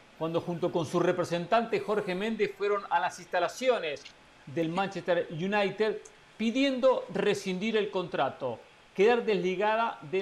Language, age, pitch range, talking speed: Spanish, 50-69, 165-205 Hz, 125 wpm